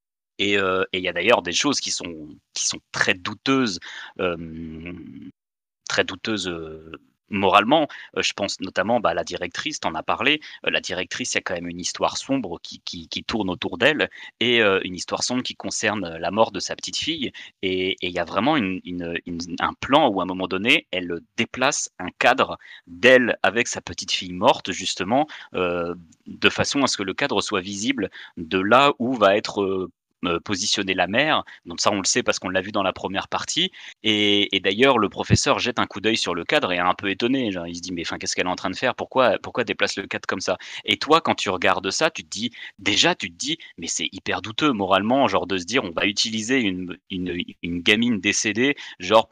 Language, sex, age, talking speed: French, male, 30-49, 220 wpm